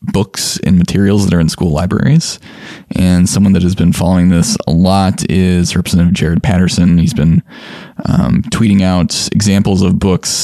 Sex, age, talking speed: male, 20-39, 165 wpm